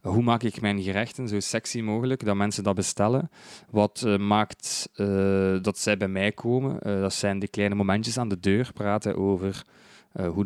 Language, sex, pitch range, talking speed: Dutch, male, 100-120 Hz, 195 wpm